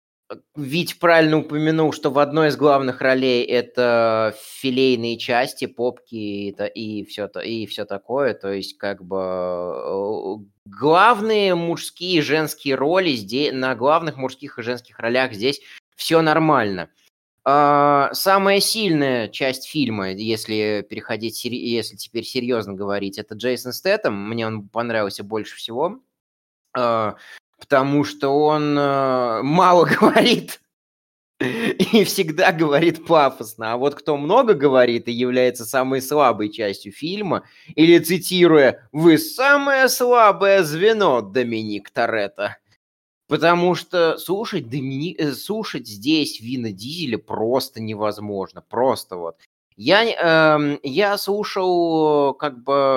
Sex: male